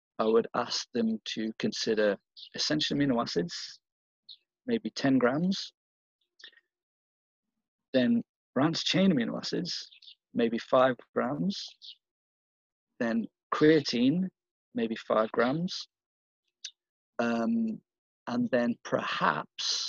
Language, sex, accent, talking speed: English, male, British, 90 wpm